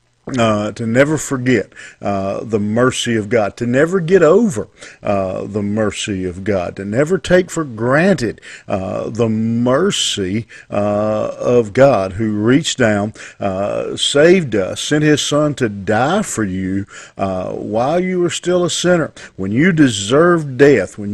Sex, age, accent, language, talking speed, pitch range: male, 50-69, American, English, 155 wpm, 105-140 Hz